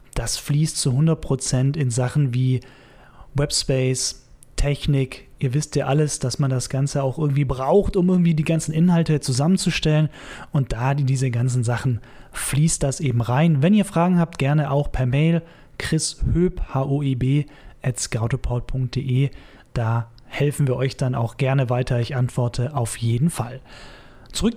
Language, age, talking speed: German, 30-49, 145 wpm